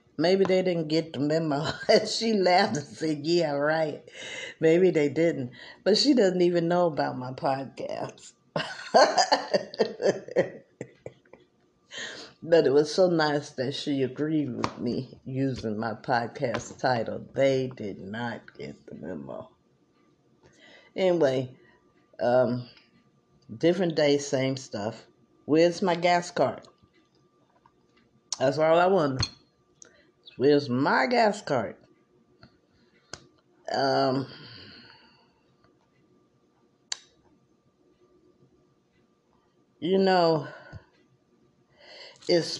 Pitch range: 130-175 Hz